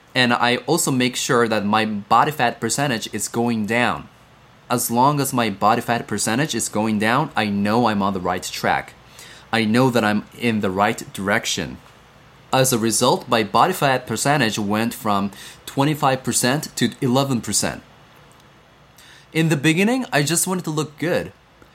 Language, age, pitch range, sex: Korean, 30-49, 110-145 Hz, male